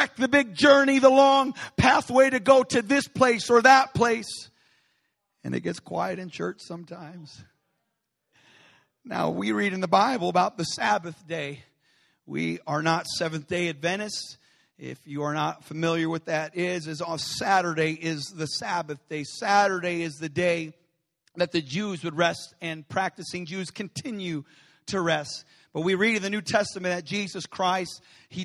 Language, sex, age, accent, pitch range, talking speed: English, male, 40-59, American, 165-210 Hz, 165 wpm